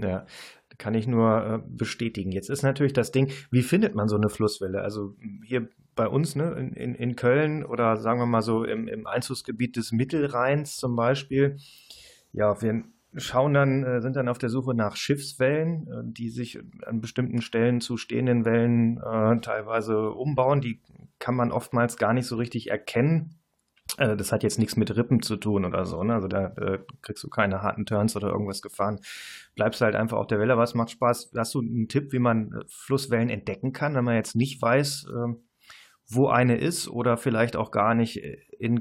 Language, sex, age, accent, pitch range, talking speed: German, male, 30-49, German, 110-130 Hz, 190 wpm